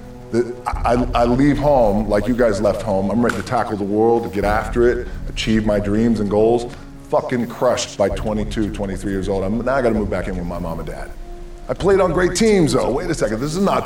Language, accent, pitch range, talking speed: English, American, 100-125 Hz, 245 wpm